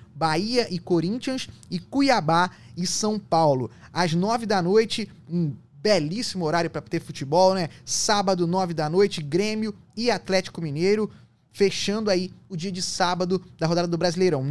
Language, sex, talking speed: Portuguese, male, 155 wpm